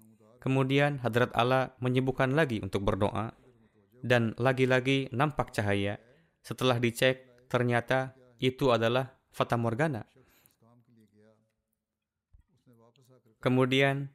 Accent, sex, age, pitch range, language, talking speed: native, male, 20-39, 115-130 Hz, Indonesian, 80 wpm